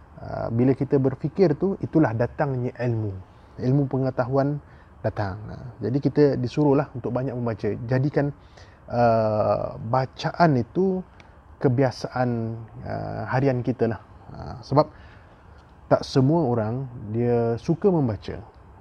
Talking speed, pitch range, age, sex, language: 110 wpm, 110-145 Hz, 20-39, male, Malay